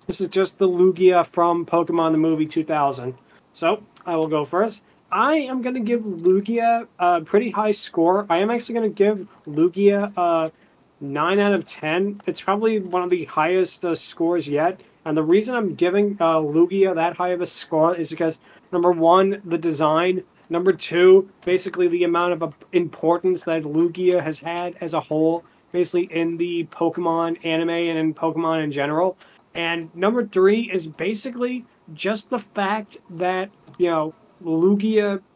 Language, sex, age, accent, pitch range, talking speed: English, male, 20-39, American, 165-195 Hz, 170 wpm